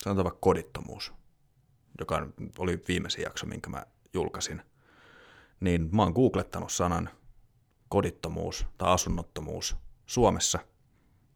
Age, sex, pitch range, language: 30-49, male, 85-105 Hz, Finnish